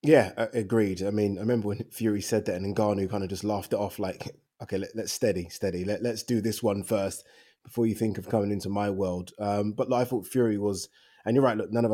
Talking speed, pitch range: 245 wpm, 105-140 Hz